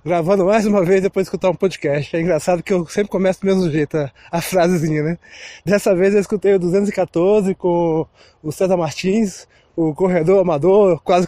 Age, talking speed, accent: 20-39, 190 wpm, Brazilian